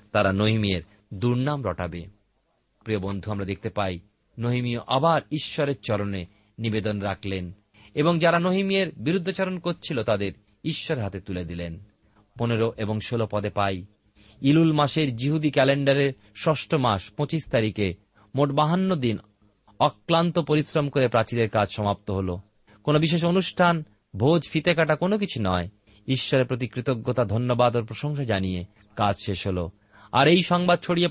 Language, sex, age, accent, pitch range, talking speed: Bengali, male, 40-59, native, 105-150 Hz, 110 wpm